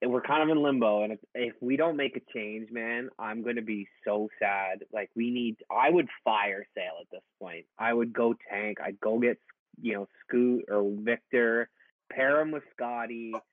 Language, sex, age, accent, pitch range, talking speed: English, male, 20-39, American, 110-130 Hz, 205 wpm